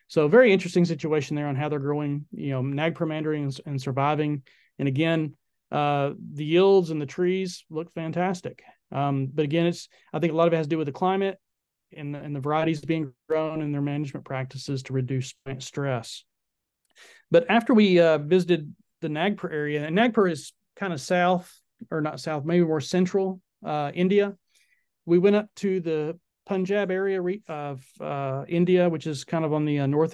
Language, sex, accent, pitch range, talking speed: English, male, American, 145-175 Hz, 190 wpm